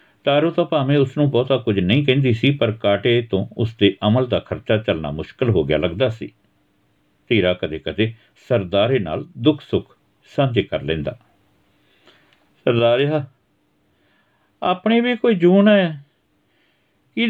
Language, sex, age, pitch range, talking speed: Punjabi, male, 60-79, 110-160 Hz, 135 wpm